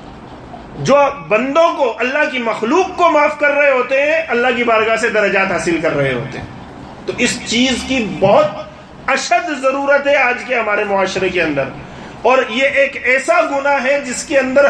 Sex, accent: male, Indian